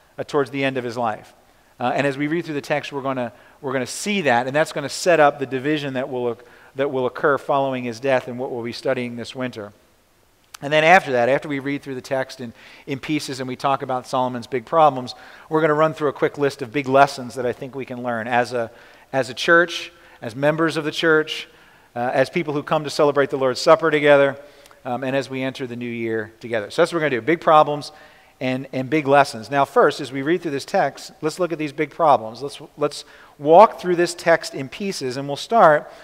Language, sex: English, male